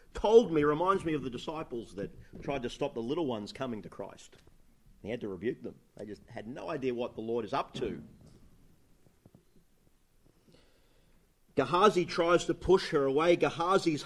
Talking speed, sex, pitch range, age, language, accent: 170 wpm, male, 145-180 Hz, 40-59, English, Australian